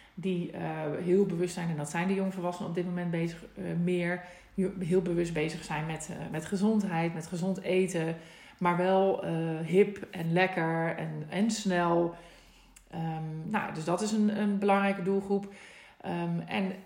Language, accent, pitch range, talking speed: Dutch, Dutch, 165-195 Hz, 155 wpm